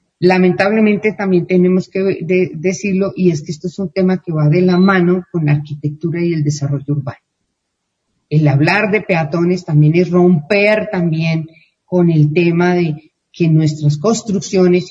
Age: 40-59